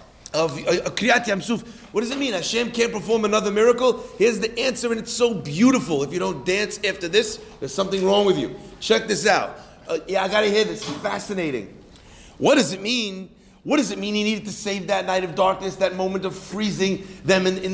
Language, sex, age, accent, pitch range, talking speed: English, male, 40-59, American, 200-270 Hz, 215 wpm